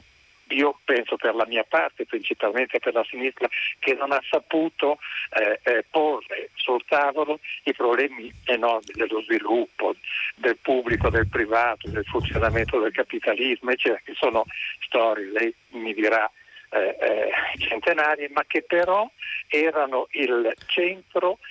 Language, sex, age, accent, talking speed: Italian, male, 50-69, native, 130 wpm